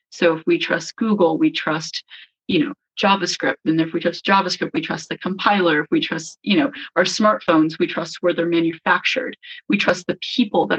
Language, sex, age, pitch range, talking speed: English, female, 20-39, 170-205 Hz, 200 wpm